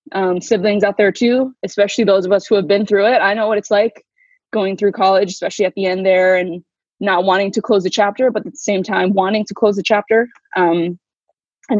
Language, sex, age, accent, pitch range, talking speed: English, female, 20-39, American, 185-215 Hz, 235 wpm